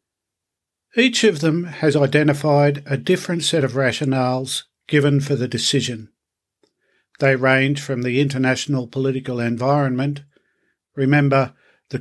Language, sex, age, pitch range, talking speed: English, male, 50-69, 135-155 Hz, 115 wpm